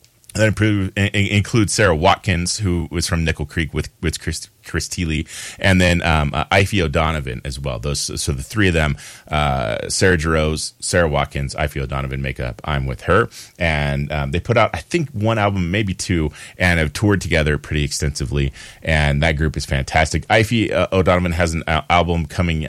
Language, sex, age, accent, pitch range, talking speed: English, male, 30-49, American, 75-95 Hz, 180 wpm